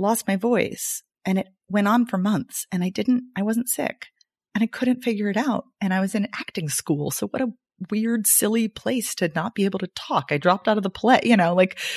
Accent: American